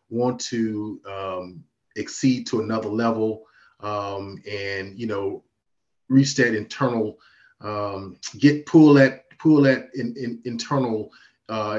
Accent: American